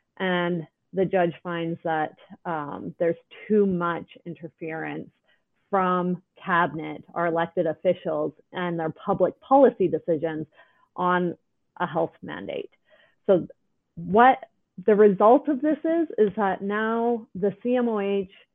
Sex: female